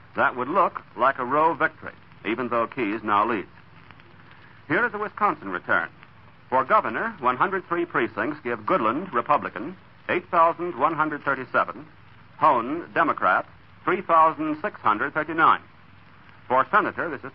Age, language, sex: 60-79, English, male